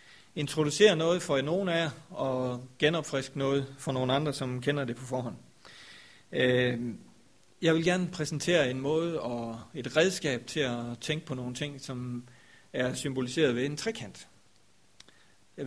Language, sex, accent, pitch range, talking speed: Danish, male, native, 125-150 Hz, 150 wpm